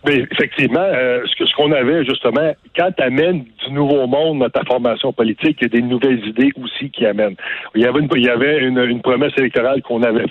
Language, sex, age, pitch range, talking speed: French, male, 60-79, 120-150 Hz, 235 wpm